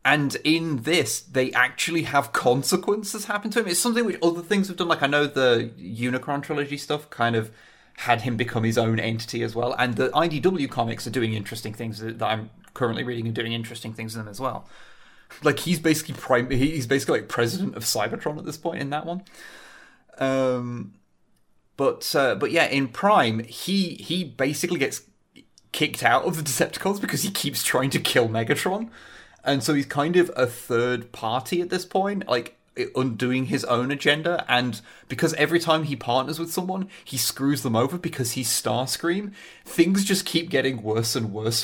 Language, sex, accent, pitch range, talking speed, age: English, male, British, 120-165 Hz, 190 wpm, 30-49